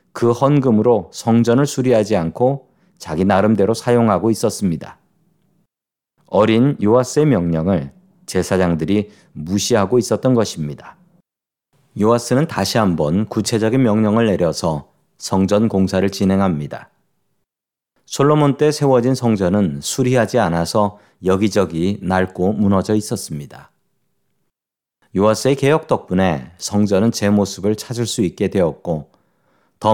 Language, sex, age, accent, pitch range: Korean, male, 40-59, native, 95-120 Hz